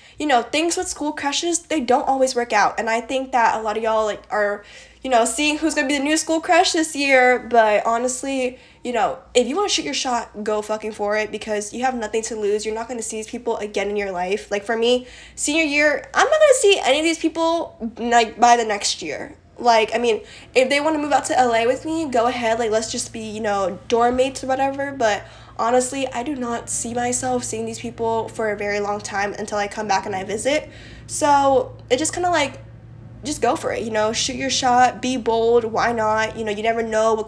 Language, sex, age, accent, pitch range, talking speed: English, female, 10-29, American, 220-265 Hz, 250 wpm